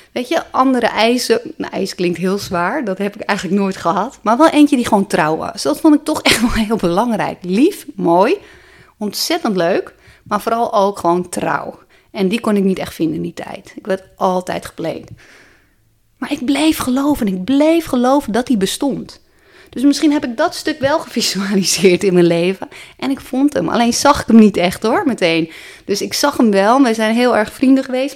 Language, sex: Dutch, female